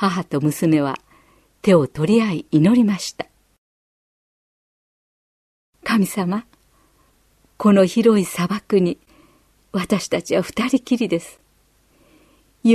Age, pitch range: 40-59, 175-220 Hz